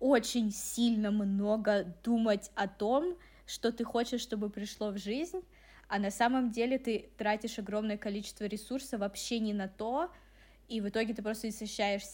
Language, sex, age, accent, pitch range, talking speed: Russian, female, 20-39, native, 200-230 Hz, 160 wpm